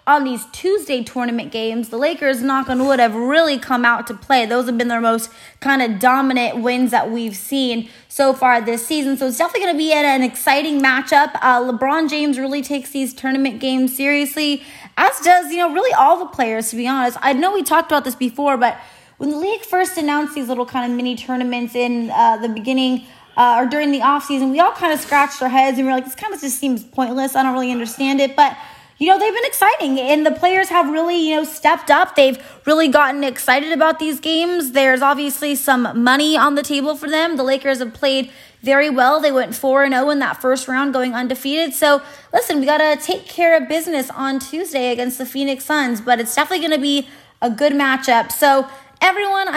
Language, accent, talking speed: English, American, 220 wpm